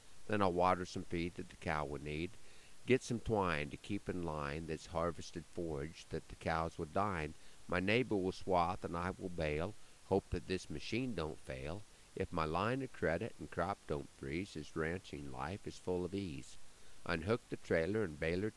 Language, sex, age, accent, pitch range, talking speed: English, male, 50-69, American, 75-100 Hz, 195 wpm